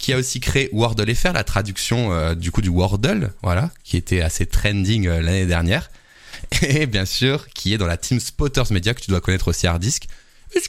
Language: French